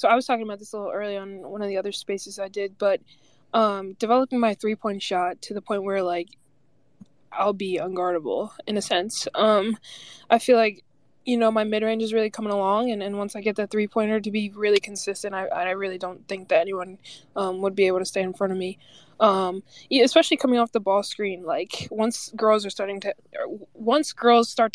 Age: 20-39